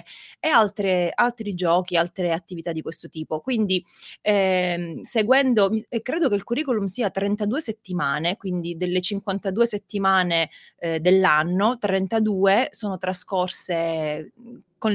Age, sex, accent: 20-39, female, native